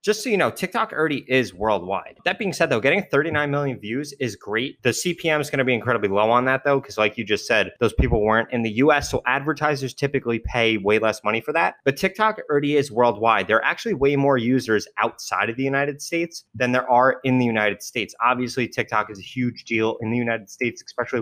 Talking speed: 235 wpm